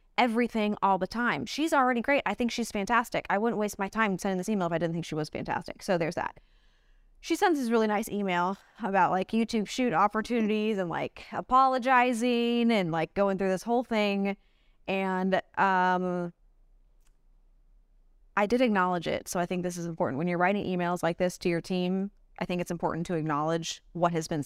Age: 20-39